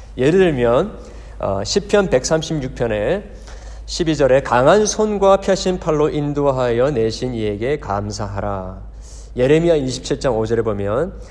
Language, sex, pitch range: Korean, male, 115-175 Hz